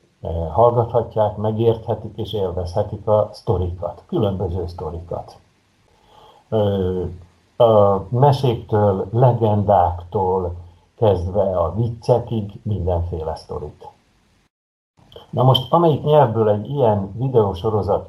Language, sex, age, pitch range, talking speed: Hungarian, male, 60-79, 95-125 Hz, 75 wpm